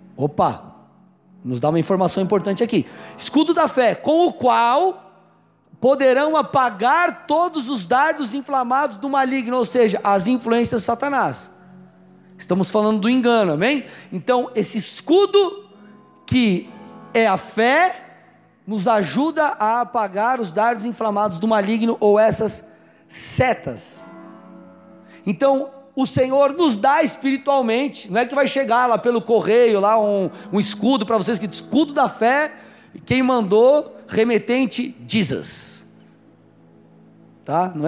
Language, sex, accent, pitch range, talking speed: Portuguese, male, Brazilian, 205-275 Hz, 130 wpm